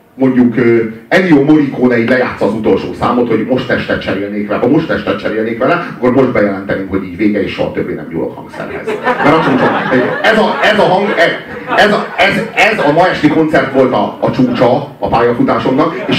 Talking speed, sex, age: 195 wpm, male, 40-59